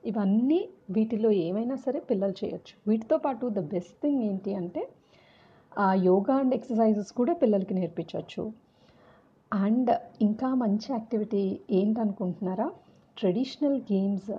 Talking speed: 110 wpm